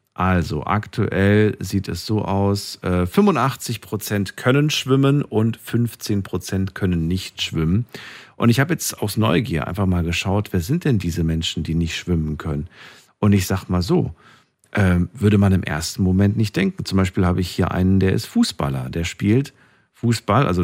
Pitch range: 90-115 Hz